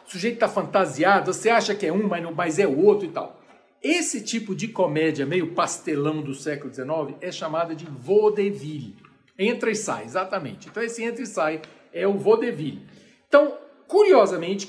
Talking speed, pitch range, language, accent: 180 wpm, 165-255 Hz, Portuguese, Brazilian